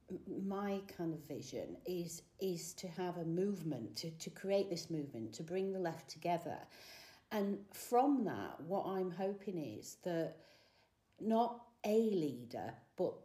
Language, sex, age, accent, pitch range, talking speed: English, female, 40-59, British, 145-180 Hz, 145 wpm